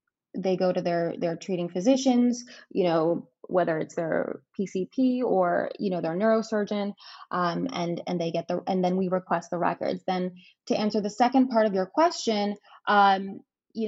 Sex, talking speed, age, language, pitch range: female, 175 wpm, 20-39, English, 175-215 Hz